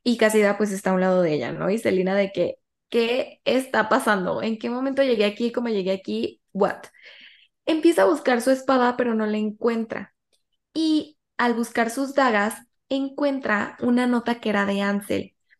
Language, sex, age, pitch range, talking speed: Spanish, female, 20-39, 205-275 Hz, 180 wpm